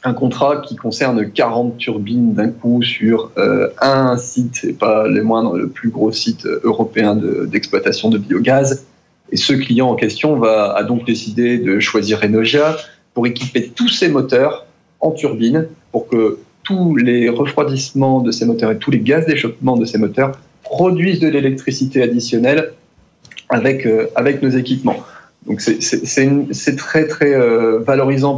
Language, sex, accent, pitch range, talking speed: French, male, French, 115-135 Hz, 160 wpm